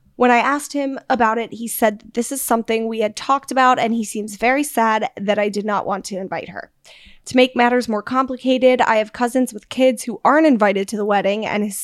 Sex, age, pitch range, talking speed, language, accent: female, 10-29, 210-255 Hz, 235 wpm, English, American